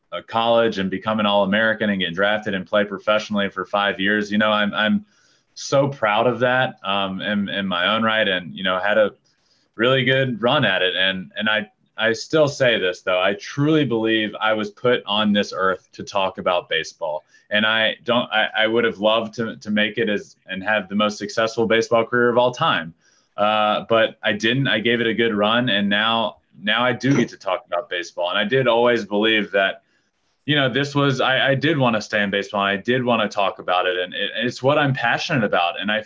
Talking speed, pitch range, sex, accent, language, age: 230 wpm, 105-130 Hz, male, American, English, 20-39